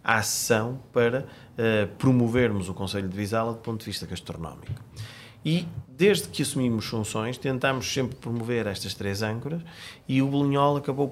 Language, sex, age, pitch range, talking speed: Portuguese, male, 30-49, 100-125 Hz, 155 wpm